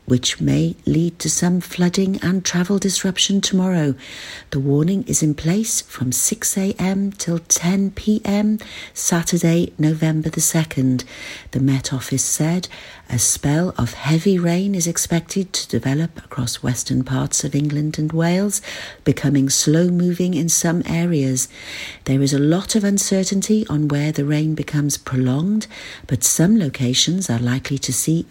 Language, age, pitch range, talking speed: English, 50-69, 140-185 Hz, 140 wpm